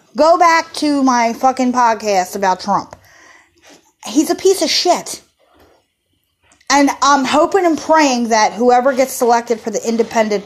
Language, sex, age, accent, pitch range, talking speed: English, female, 30-49, American, 235-345 Hz, 145 wpm